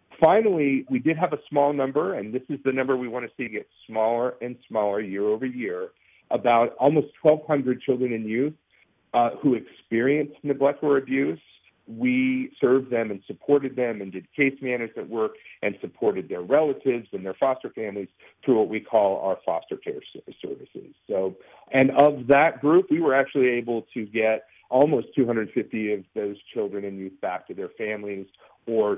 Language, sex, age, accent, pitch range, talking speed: English, male, 50-69, American, 110-150 Hz, 175 wpm